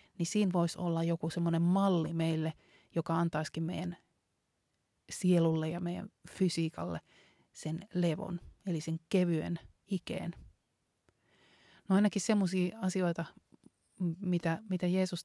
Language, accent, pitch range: Finnish, native, 165-180 Hz